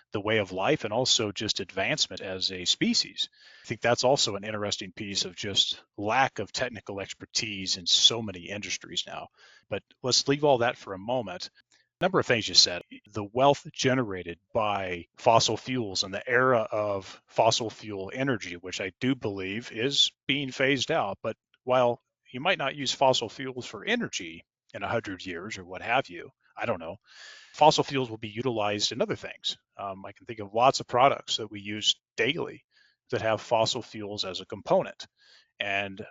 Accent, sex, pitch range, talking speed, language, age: American, male, 100-130 Hz, 190 wpm, English, 30-49